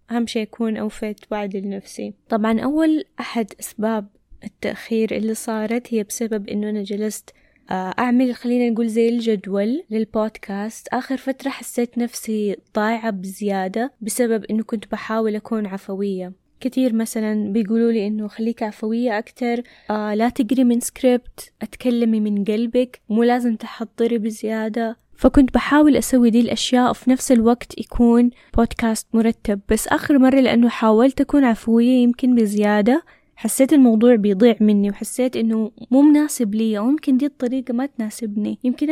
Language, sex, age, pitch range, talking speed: Arabic, female, 10-29, 215-250 Hz, 135 wpm